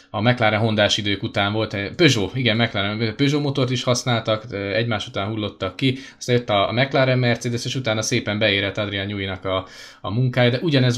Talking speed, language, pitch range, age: 180 wpm, Hungarian, 105-130 Hz, 20-39